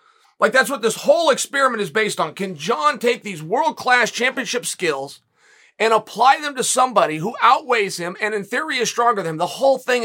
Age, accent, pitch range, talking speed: 30-49, American, 195-265 Hz, 205 wpm